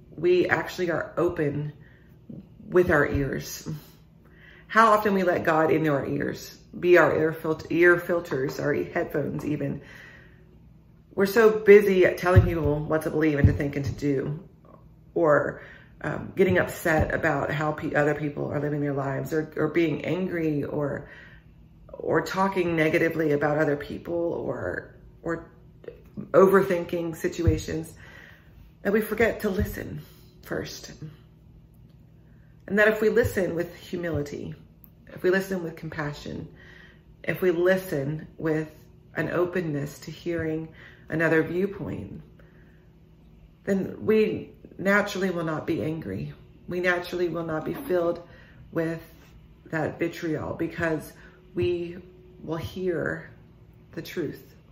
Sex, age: female, 30-49